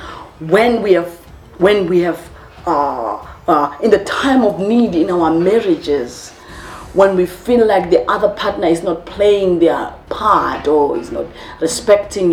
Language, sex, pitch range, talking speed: English, female, 170-275 Hz, 155 wpm